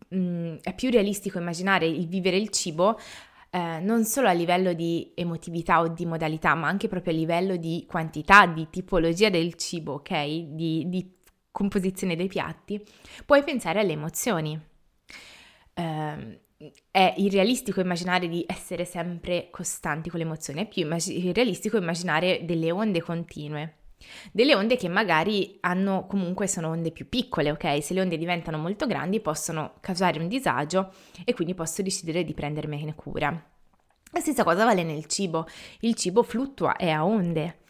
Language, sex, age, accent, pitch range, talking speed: Italian, female, 20-39, native, 165-200 Hz, 160 wpm